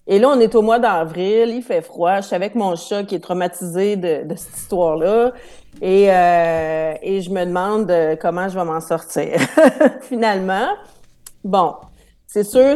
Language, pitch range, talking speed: French, 175-225 Hz, 175 wpm